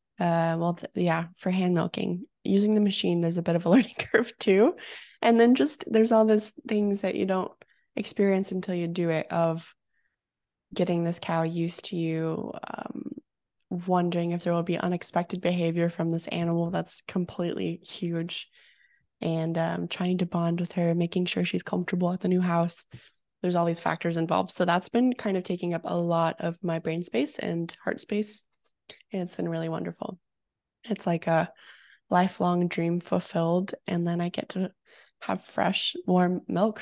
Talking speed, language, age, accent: 180 wpm, English, 20-39, American